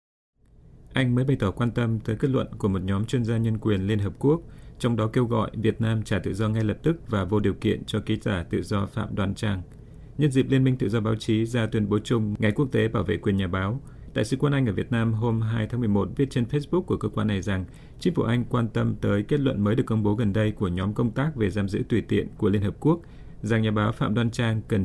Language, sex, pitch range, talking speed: Vietnamese, male, 105-120 Hz, 280 wpm